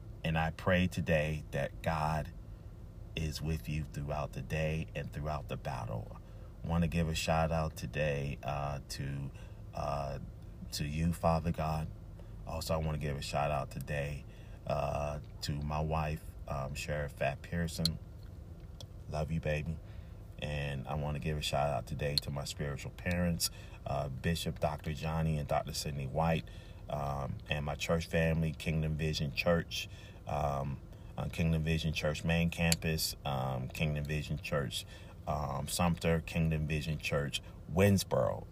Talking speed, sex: 145 wpm, male